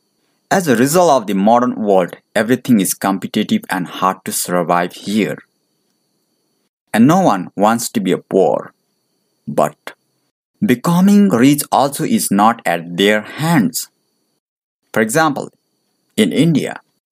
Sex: male